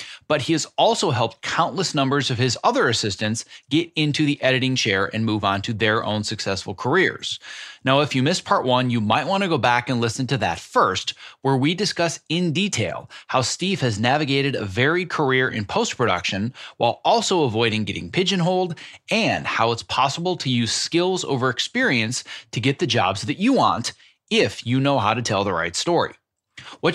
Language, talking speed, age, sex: English, 190 wpm, 30-49, male